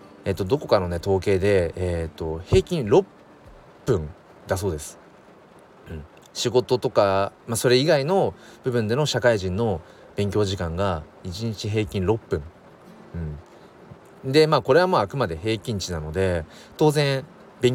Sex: male